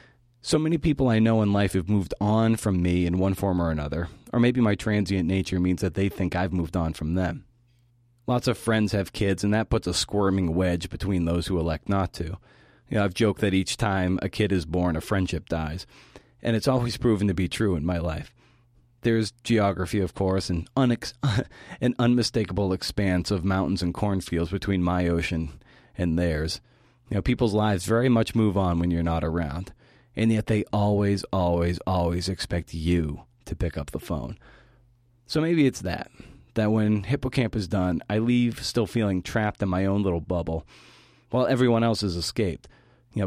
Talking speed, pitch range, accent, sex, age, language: 185 wpm, 90-120 Hz, American, male, 30-49, English